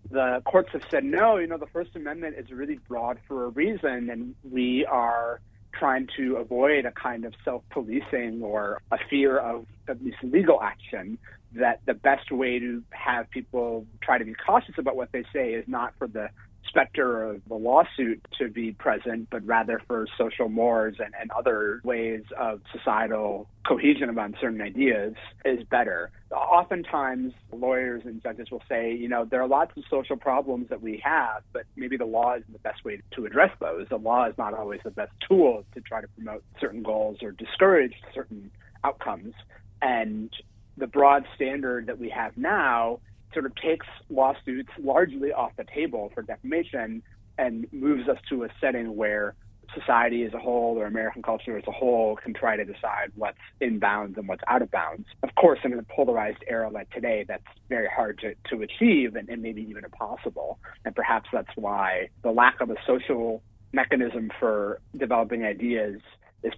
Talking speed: 185 wpm